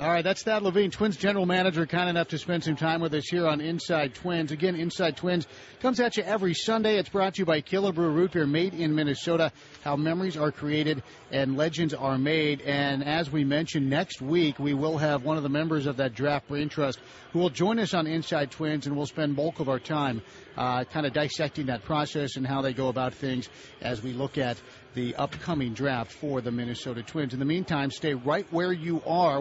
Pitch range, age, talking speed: 140-180 Hz, 50-69, 220 wpm